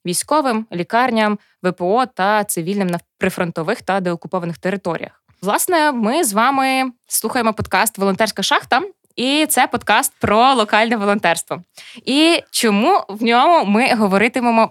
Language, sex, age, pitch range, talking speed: Ukrainian, female, 20-39, 195-255 Hz, 120 wpm